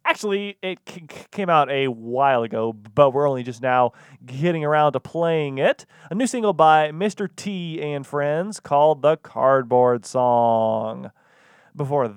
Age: 30-49